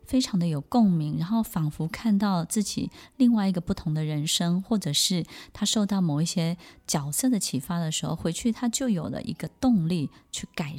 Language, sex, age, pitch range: Chinese, female, 20-39, 165-225 Hz